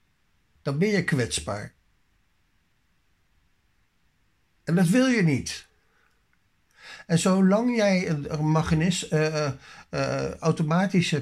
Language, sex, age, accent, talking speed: Dutch, male, 60-79, Dutch, 90 wpm